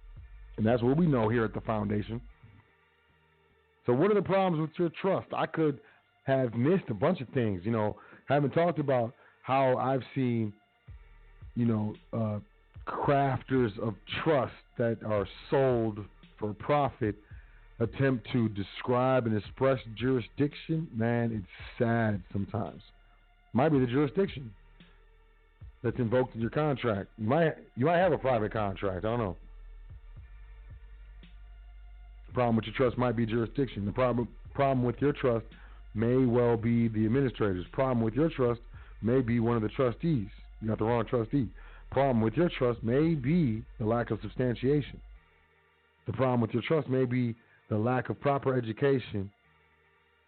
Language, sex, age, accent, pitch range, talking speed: English, male, 40-59, American, 110-135 Hz, 155 wpm